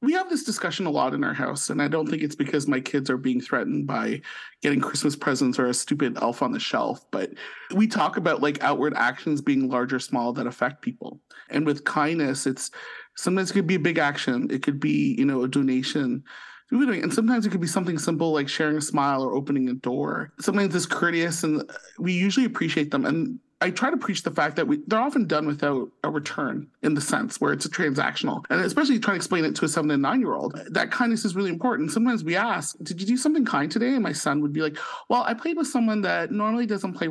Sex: male